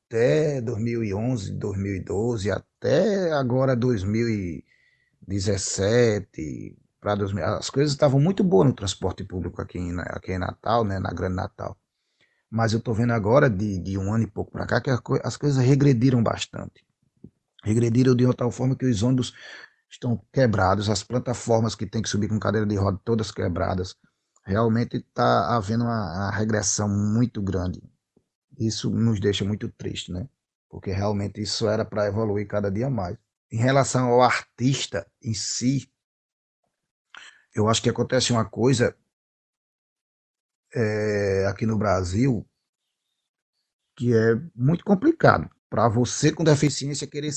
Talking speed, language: 140 wpm, Portuguese